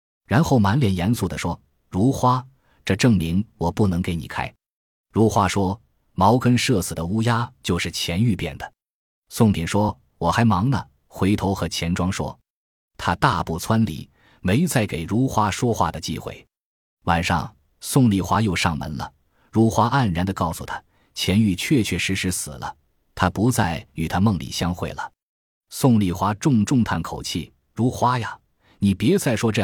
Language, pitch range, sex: Chinese, 90-115 Hz, male